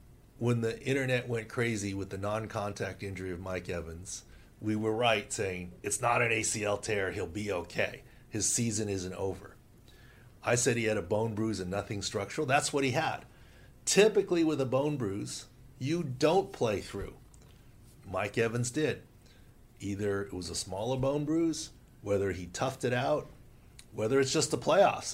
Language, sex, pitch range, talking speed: English, male, 100-130 Hz, 170 wpm